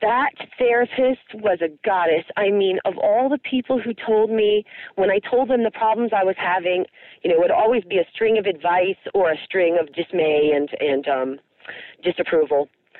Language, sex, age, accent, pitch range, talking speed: English, female, 40-59, American, 175-250 Hz, 195 wpm